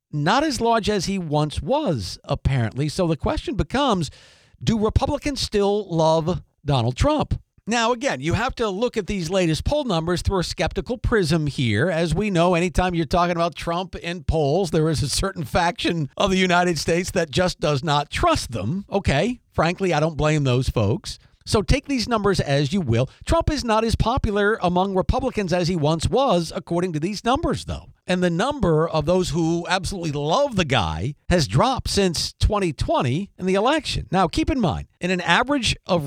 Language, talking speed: English, 190 wpm